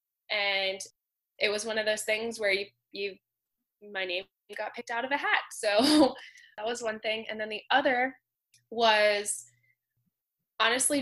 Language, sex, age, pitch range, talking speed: English, female, 10-29, 195-235 Hz, 160 wpm